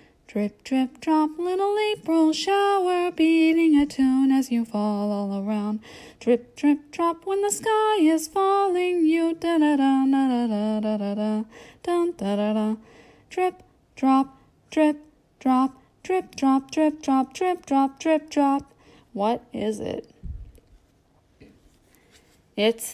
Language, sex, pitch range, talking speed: English, female, 210-300 Hz, 110 wpm